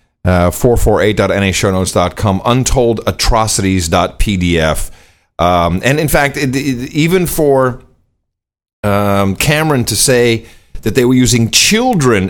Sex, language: male, English